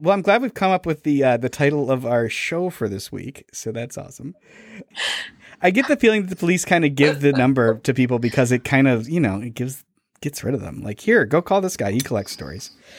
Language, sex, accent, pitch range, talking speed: English, male, American, 110-155 Hz, 255 wpm